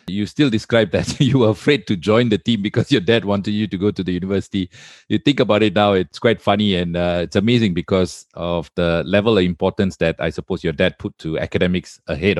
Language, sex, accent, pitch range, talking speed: English, male, Malaysian, 90-115 Hz, 230 wpm